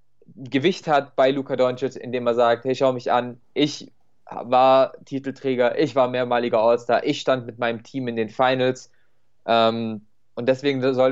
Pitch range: 125-145 Hz